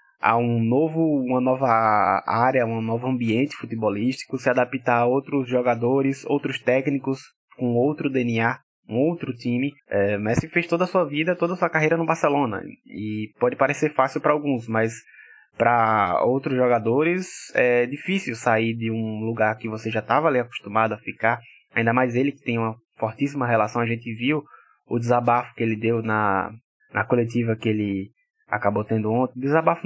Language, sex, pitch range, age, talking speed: Portuguese, male, 115-140 Hz, 20-39, 170 wpm